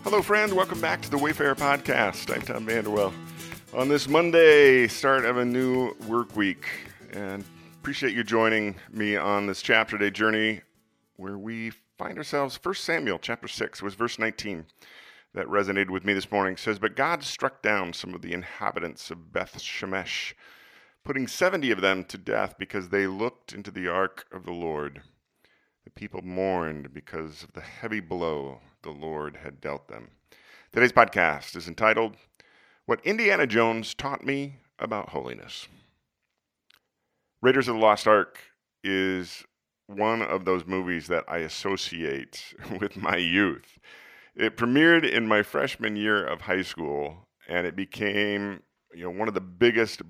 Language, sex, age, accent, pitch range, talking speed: English, male, 40-59, American, 95-120 Hz, 160 wpm